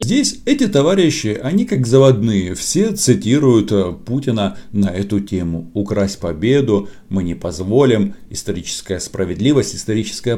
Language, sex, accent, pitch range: Russian, male, native, 100-130 Hz